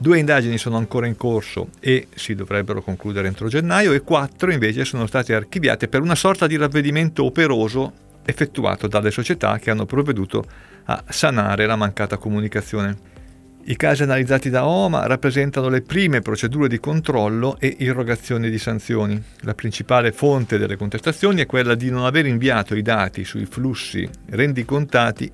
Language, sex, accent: Italian, male, native